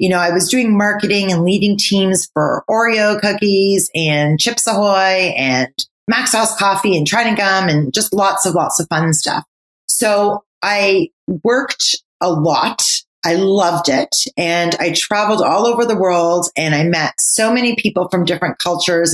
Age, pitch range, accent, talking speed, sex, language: 30-49, 165-205 Hz, American, 170 wpm, female, English